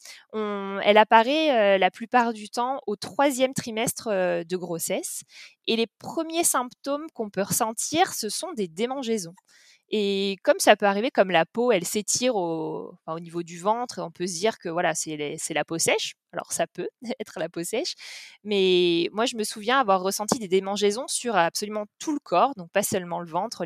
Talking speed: 200 wpm